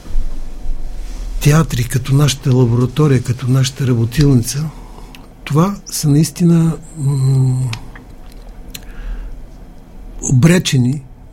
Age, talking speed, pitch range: 60-79, 65 wpm, 120-145 Hz